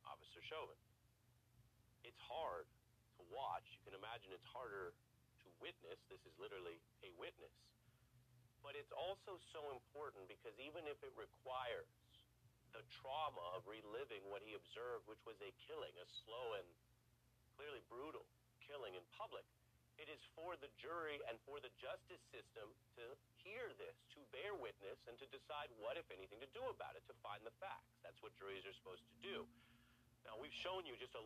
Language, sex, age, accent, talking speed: English, male, 40-59, American, 175 wpm